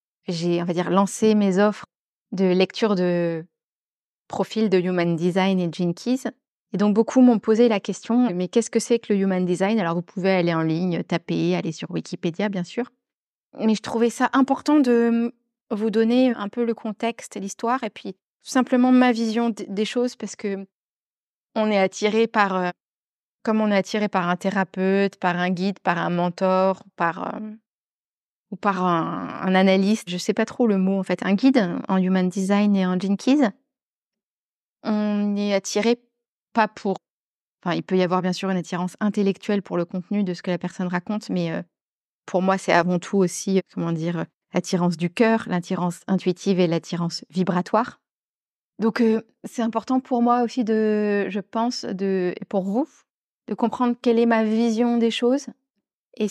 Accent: French